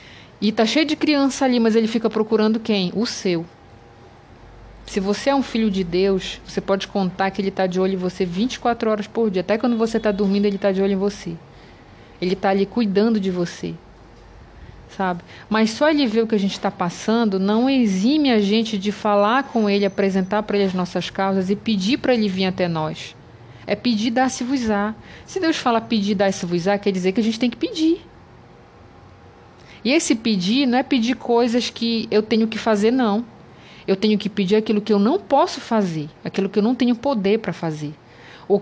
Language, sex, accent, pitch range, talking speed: Portuguese, female, Brazilian, 190-230 Hz, 205 wpm